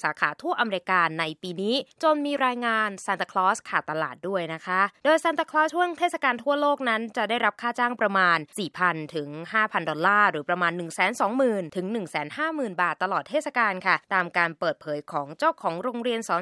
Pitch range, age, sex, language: 175-240 Hz, 20-39, female, Thai